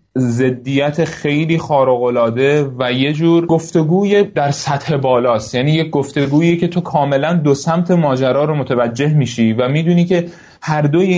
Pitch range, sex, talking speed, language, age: 125-170 Hz, male, 145 wpm, Persian, 30-49